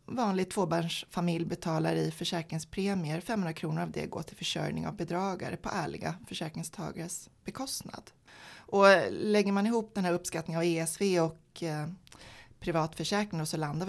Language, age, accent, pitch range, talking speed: Swedish, 30-49, native, 160-190 Hz, 145 wpm